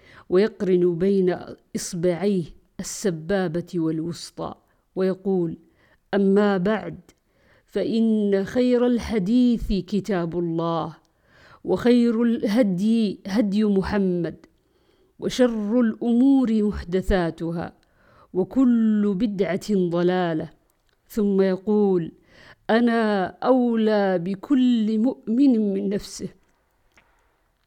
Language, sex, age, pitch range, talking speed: Arabic, female, 50-69, 195-245 Hz, 65 wpm